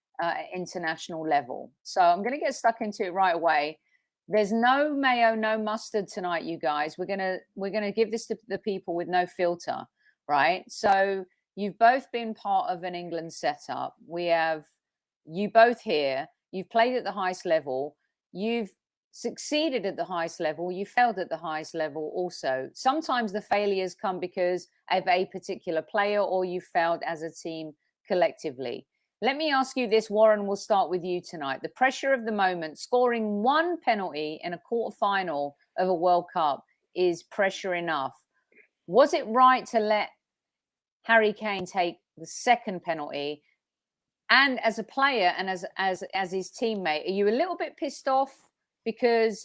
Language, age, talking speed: English, 40-59, 170 wpm